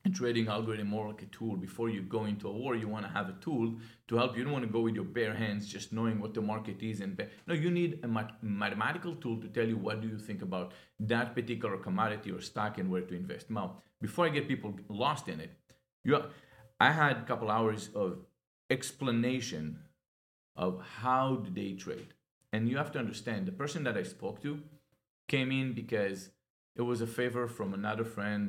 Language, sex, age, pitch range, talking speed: English, male, 40-59, 105-130 Hz, 220 wpm